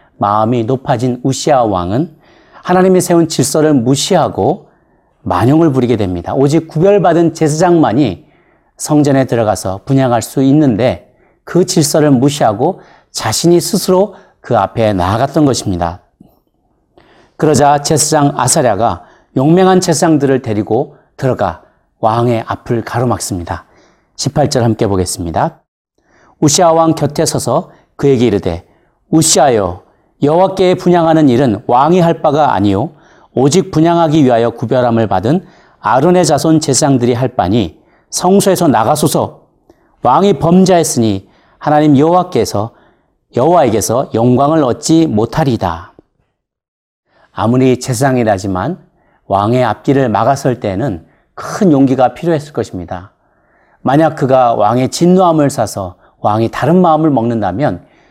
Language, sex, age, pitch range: Korean, male, 40-59, 115-160 Hz